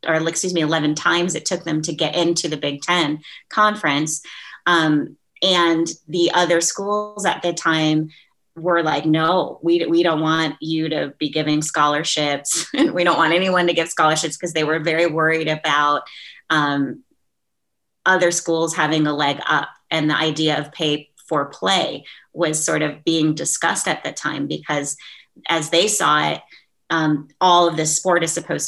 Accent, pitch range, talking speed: American, 155-175 Hz, 170 wpm